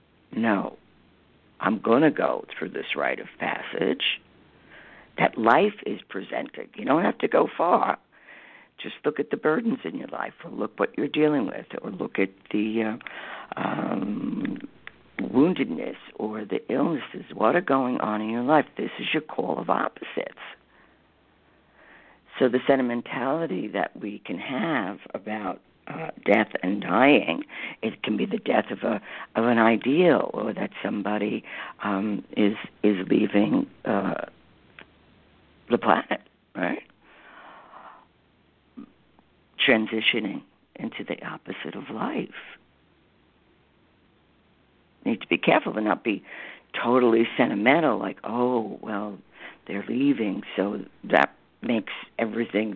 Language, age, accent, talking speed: English, 60-79, American, 130 wpm